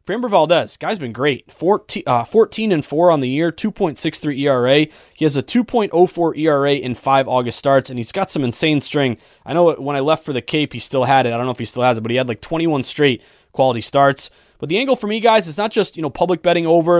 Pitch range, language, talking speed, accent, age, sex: 130-170 Hz, English, 245 wpm, American, 20-39, male